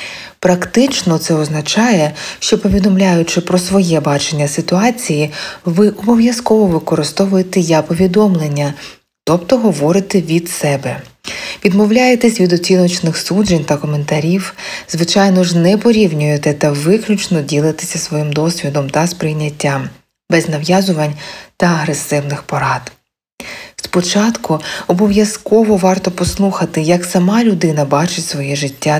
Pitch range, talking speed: 150-195 Hz, 100 wpm